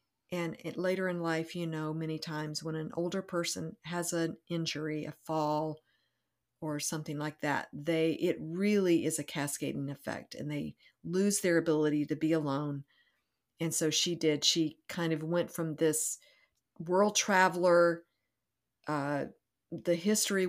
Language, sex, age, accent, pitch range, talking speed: English, female, 50-69, American, 155-180 Hz, 150 wpm